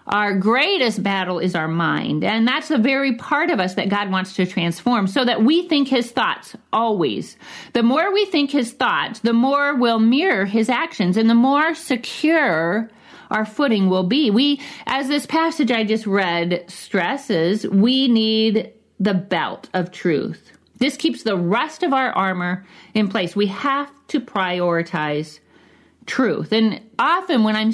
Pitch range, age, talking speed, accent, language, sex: 185-255 Hz, 40-59, 165 wpm, American, English, female